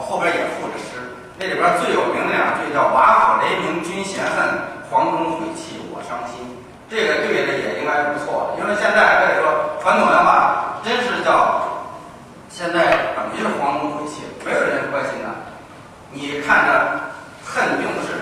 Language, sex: Chinese, male